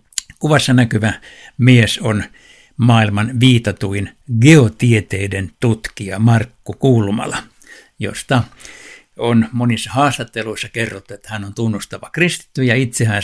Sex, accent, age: male, native, 60-79